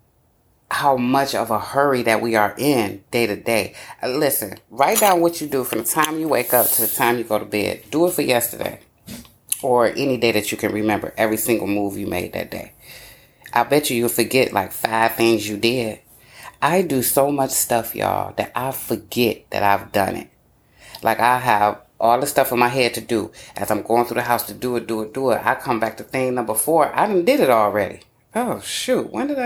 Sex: female